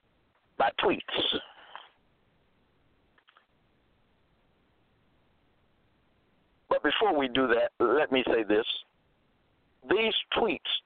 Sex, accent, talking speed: male, American, 65 wpm